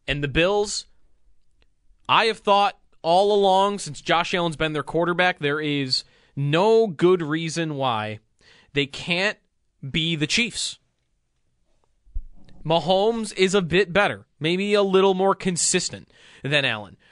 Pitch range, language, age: 125-185 Hz, English, 20-39